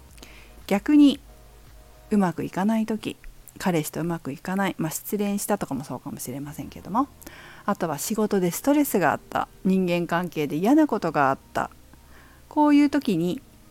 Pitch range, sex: 145-225 Hz, female